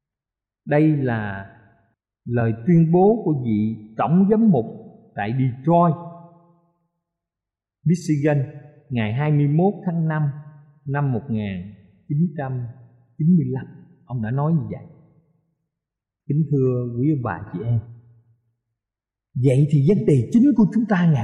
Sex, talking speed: male, 110 wpm